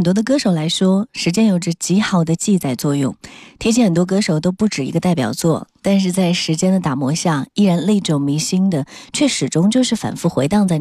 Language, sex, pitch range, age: Chinese, female, 150-205 Hz, 20-39